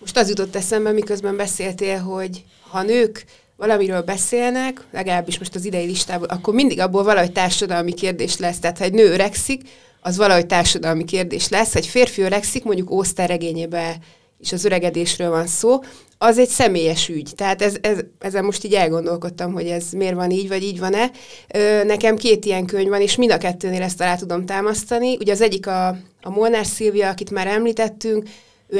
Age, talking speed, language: 30-49, 180 wpm, Hungarian